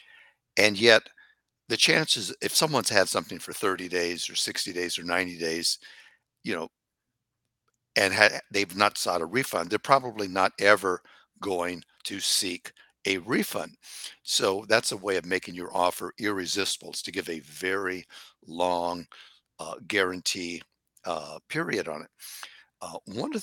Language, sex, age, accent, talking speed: English, male, 60-79, American, 150 wpm